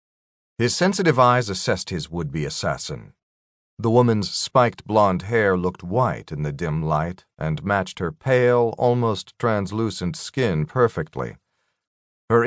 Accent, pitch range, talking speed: American, 90-120 Hz, 130 wpm